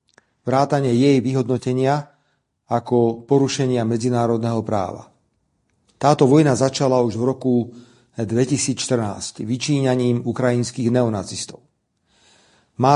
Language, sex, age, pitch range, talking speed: Czech, male, 40-59, 120-140 Hz, 85 wpm